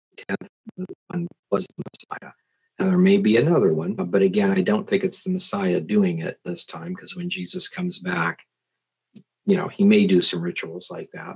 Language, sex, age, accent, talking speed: English, male, 50-69, American, 180 wpm